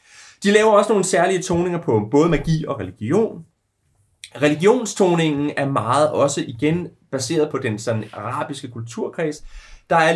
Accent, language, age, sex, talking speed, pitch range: native, Danish, 30-49, male, 140 wpm, 120-180 Hz